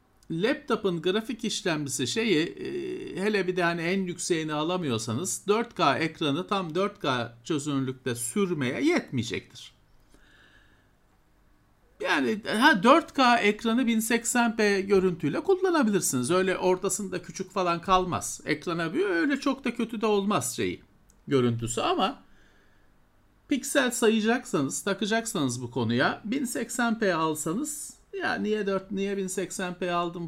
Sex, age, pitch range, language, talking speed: male, 50-69, 145-220 Hz, Turkish, 105 wpm